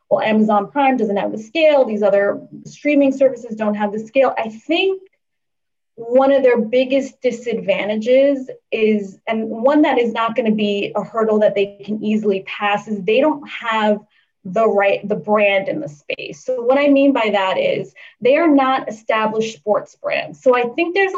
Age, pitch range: 20-39, 215-275 Hz